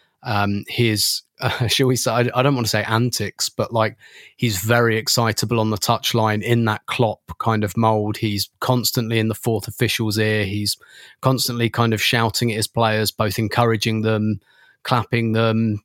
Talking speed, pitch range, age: 175 wpm, 110-120 Hz, 20-39